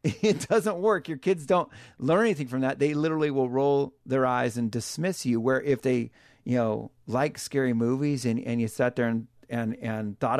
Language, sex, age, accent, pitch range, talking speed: English, male, 40-59, American, 115-145 Hz, 210 wpm